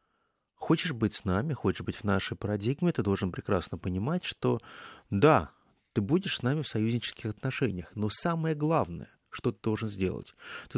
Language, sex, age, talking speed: Russian, male, 30-49, 165 wpm